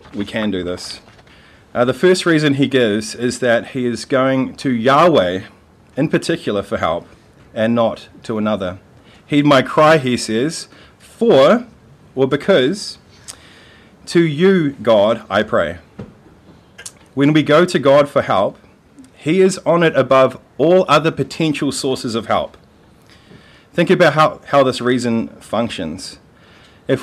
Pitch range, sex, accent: 120-150 Hz, male, Australian